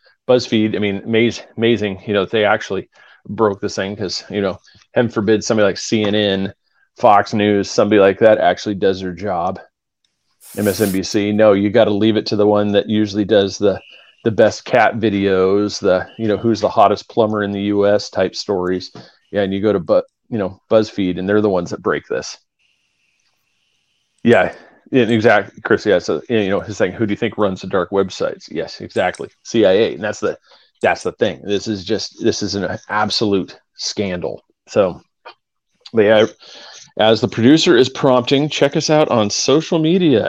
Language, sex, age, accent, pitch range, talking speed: English, male, 30-49, American, 100-115 Hz, 180 wpm